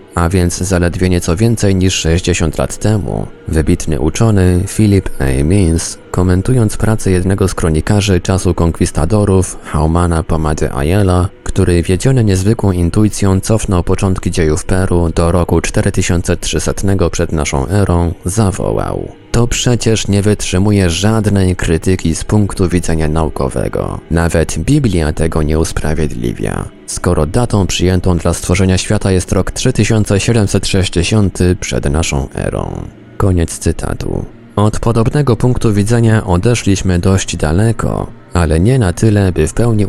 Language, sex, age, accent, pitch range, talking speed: Polish, male, 20-39, native, 85-105 Hz, 125 wpm